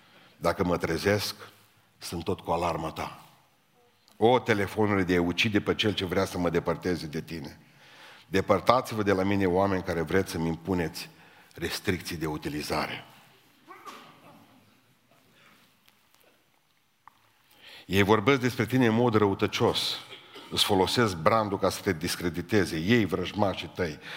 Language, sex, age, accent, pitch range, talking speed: Romanian, male, 50-69, native, 85-105 Hz, 125 wpm